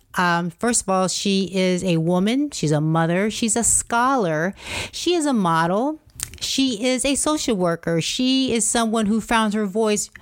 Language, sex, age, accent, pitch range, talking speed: English, female, 30-49, American, 205-265 Hz, 175 wpm